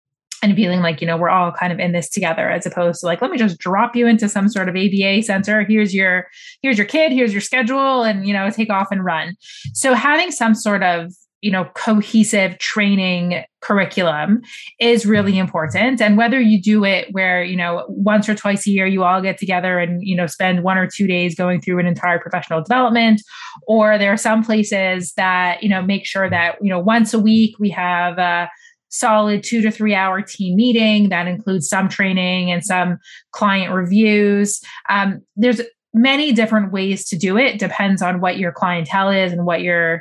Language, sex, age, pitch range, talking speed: English, female, 20-39, 180-215 Hz, 205 wpm